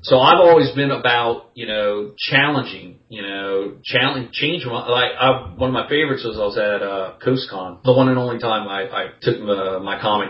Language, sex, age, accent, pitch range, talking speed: English, male, 40-59, American, 105-140 Hz, 210 wpm